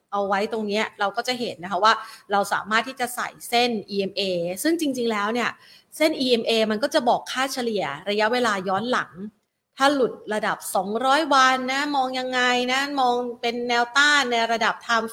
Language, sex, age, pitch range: Thai, female, 30-49, 200-250 Hz